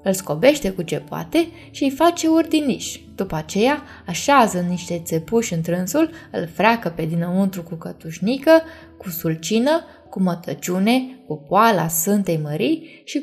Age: 20-39